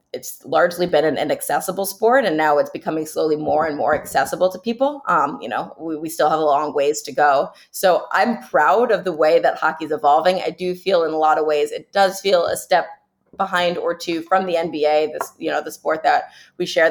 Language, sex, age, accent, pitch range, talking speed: English, female, 20-39, American, 155-190 Hz, 235 wpm